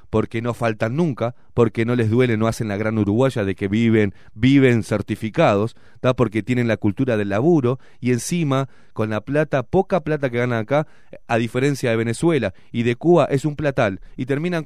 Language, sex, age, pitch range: Spanish, male, 30-49, 110-145 Hz